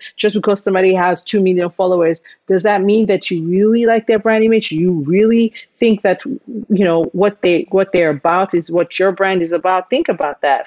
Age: 40-59